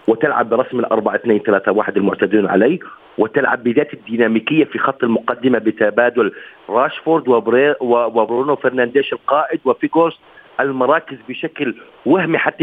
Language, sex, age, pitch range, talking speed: Arabic, male, 40-59, 145-235 Hz, 120 wpm